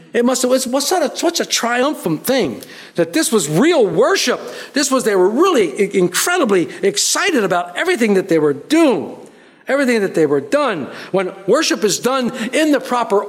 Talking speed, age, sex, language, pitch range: 170 wpm, 60-79, male, English, 195-285 Hz